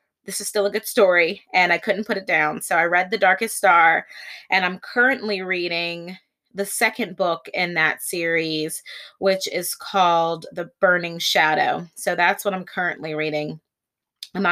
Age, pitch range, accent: 20-39, 170-205 Hz, American